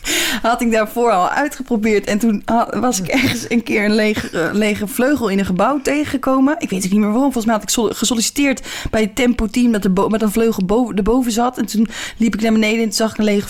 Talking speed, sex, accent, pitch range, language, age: 245 wpm, female, Dutch, 210-265 Hz, Dutch, 20-39